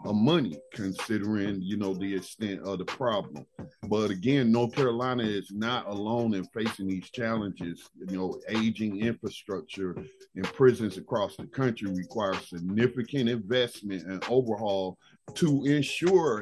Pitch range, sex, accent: 100-140 Hz, male, American